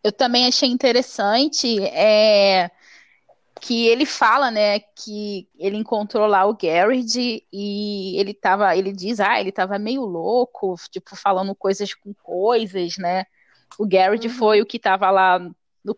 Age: 10-29